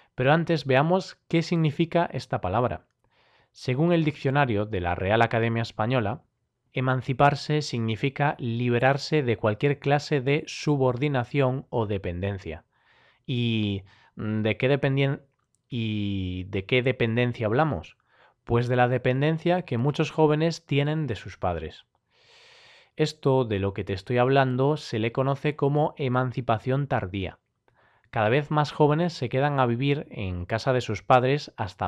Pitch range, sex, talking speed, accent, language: 115-145 Hz, male, 135 wpm, Spanish, Spanish